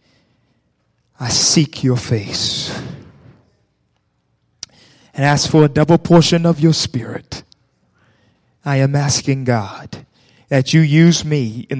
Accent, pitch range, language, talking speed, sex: American, 130-165 Hz, English, 110 wpm, male